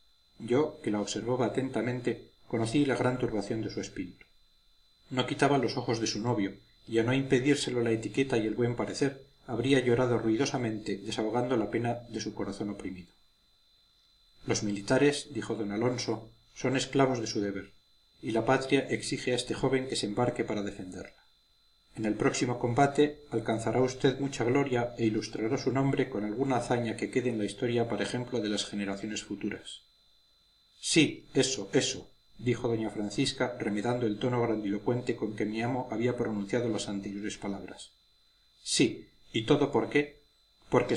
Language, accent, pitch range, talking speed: Spanish, Spanish, 105-130 Hz, 165 wpm